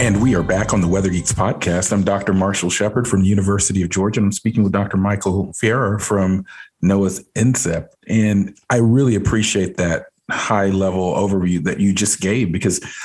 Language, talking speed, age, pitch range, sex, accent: English, 185 wpm, 40-59, 95-120 Hz, male, American